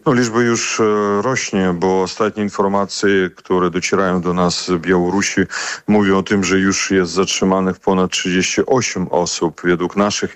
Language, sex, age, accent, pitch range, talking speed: Polish, male, 40-59, native, 90-100 Hz, 145 wpm